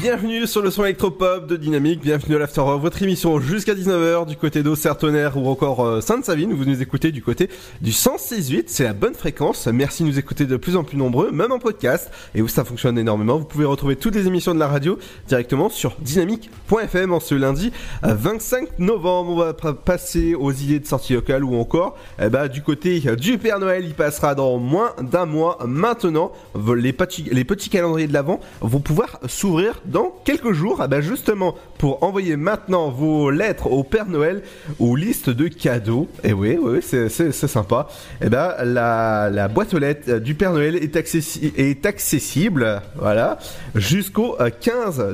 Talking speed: 185 wpm